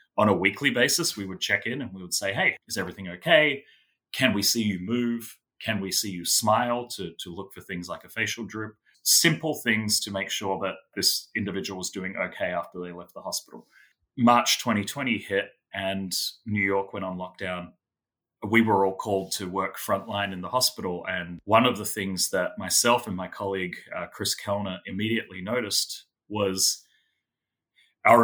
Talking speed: 185 wpm